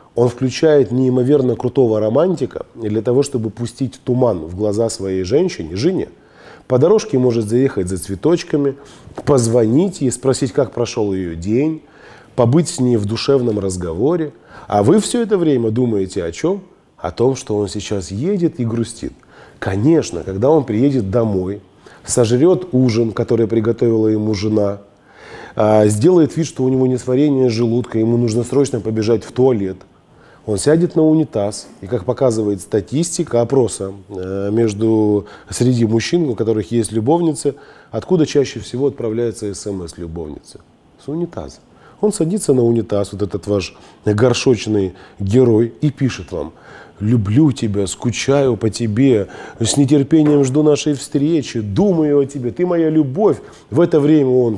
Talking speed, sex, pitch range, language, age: 140 wpm, male, 105-140 Hz, Russian, 20-39